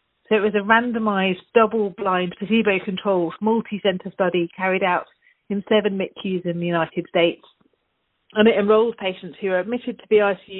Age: 40-59